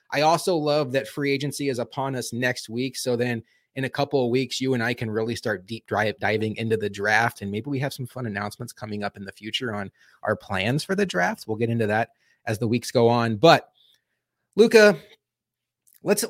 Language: English